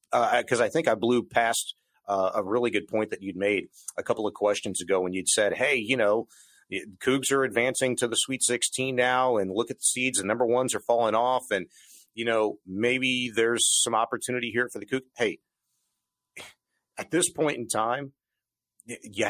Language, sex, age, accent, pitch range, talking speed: English, male, 40-59, American, 105-130 Hz, 200 wpm